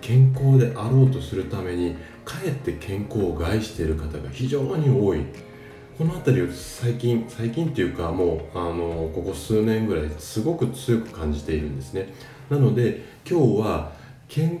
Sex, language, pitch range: male, Japanese, 85-130 Hz